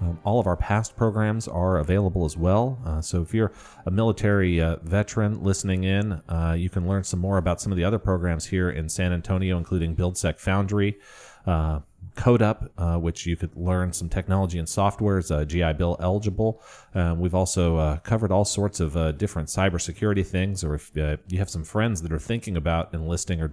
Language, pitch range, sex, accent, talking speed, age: English, 85-100 Hz, male, American, 200 wpm, 40-59